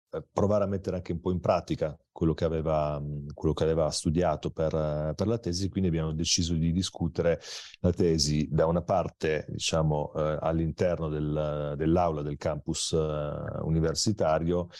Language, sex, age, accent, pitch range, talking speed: Italian, male, 40-59, native, 80-90 Hz, 150 wpm